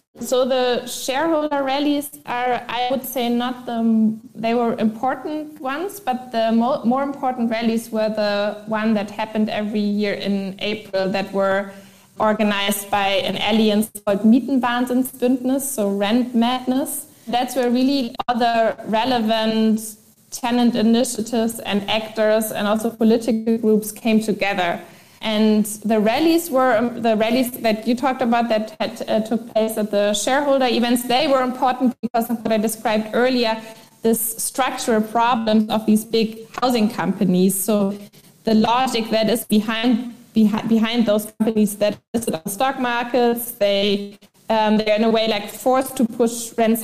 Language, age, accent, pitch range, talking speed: English, 20-39, German, 210-245 Hz, 150 wpm